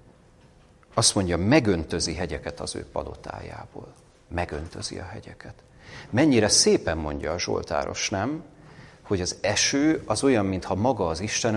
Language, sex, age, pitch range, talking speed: Hungarian, male, 40-59, 90-120 Hz, 130 wpm